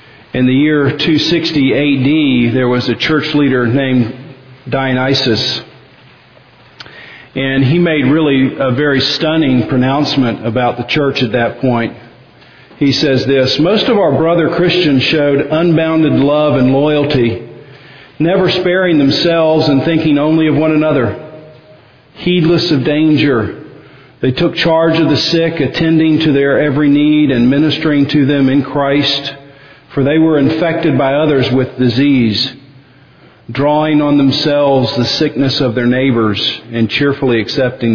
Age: 50-69